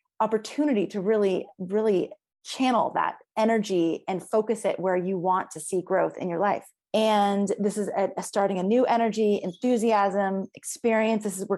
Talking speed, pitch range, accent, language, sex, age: 170 wpm, 190-225 Hz, American, English, female, 20-39